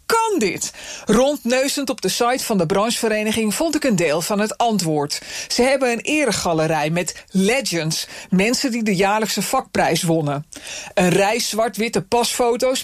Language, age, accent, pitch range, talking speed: Dutch, 40-59, Dutch, 195-285 Hz, 150 wpm